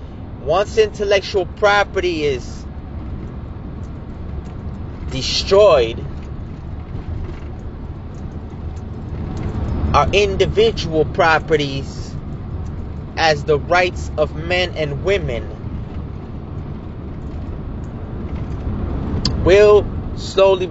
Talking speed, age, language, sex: 50 wpm, 30-49, English, male